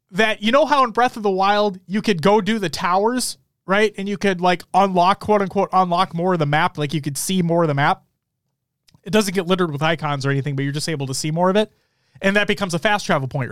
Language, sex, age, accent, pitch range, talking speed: English, male, 30-49, American, 155-230 Hz, 260 wpm